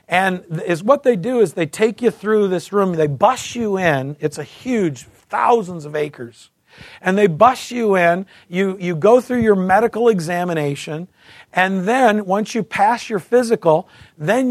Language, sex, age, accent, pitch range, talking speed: English, male, 50-69, American, 170-215 Hz, 175 wpm